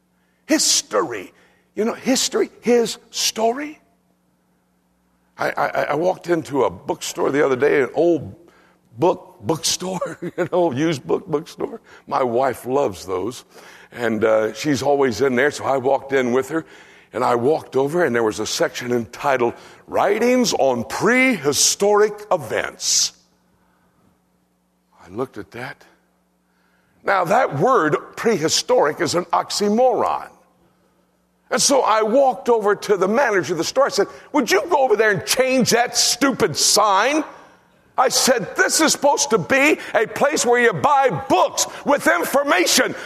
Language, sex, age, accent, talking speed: English, male, 60-79, American, 145 wpm